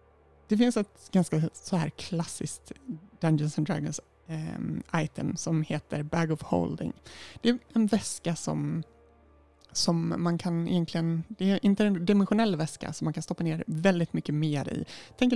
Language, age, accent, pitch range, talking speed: Swedish, 20-39, native, 155-195 Hz, 155 wpm